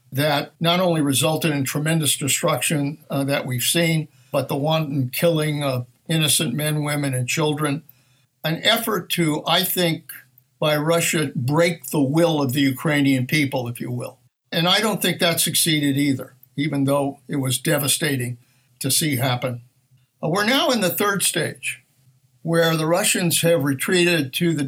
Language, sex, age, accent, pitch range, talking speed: English, male, 60-79, American, 135-170 Hz, 160 wpm